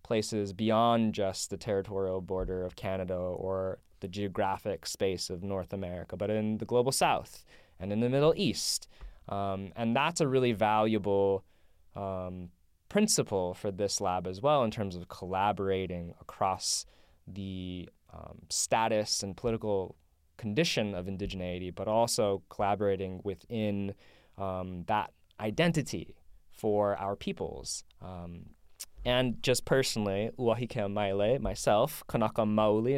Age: 20-39